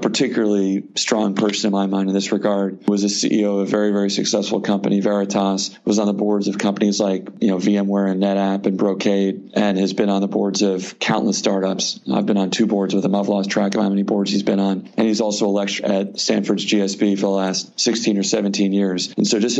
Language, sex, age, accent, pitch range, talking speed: English, male, 40-59, American, 100-110 Hz, 235 wpm